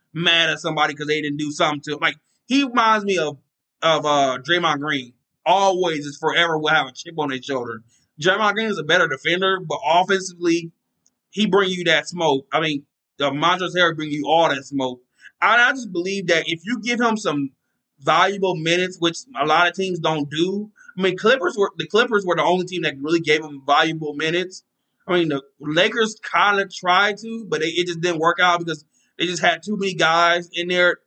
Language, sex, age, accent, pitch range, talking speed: English, male, 20-39, American, 150-185 Hz, 215 wpm